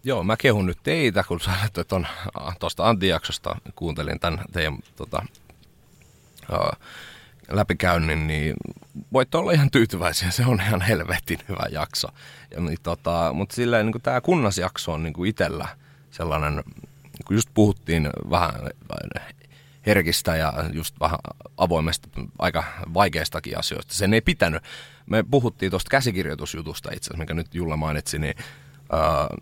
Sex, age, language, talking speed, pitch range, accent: male, 30-49, Finnish, 130 wpm, 85-115 Hz, native